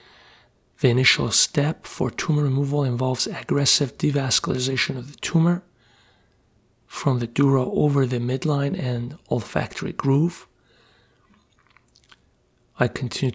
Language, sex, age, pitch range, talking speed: English, male, 40-59, 120-145 Hz, 105 wpm